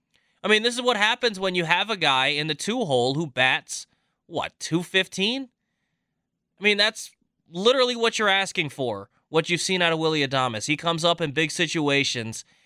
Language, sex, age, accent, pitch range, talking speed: English, male, 20-39, American, 130-175 Hz, 185 wpm